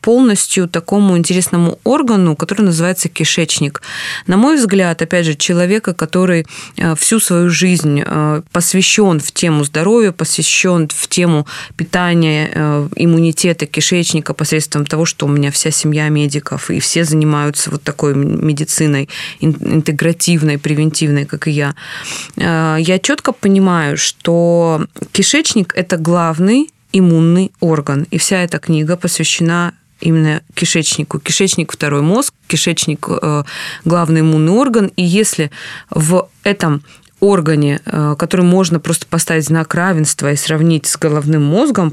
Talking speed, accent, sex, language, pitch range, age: 125 wpm, native, female, Russian, 155-180 Hz, 20-39